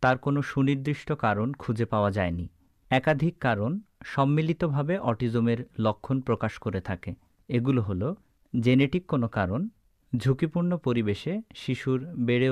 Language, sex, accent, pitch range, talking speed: Bengali, male, native, 110-145 Hz, 115 wpm